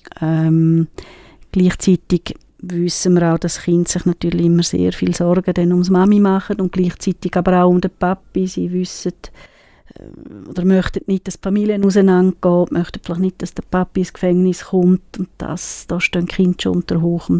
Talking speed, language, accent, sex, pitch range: 175 wpm, German, Swiss, female, 170-195 Hz